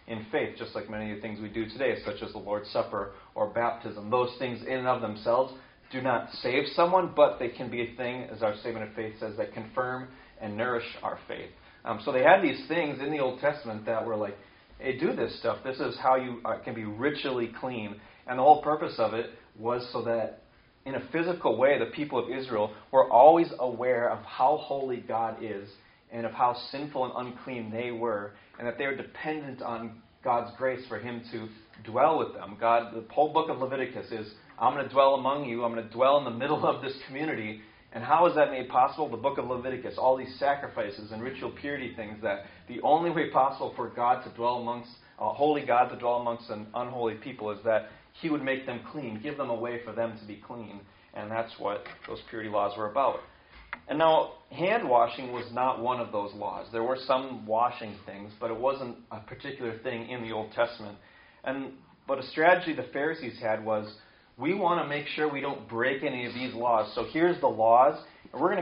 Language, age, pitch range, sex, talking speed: English, 30-49, 110-135 Hz, male, 220 wpm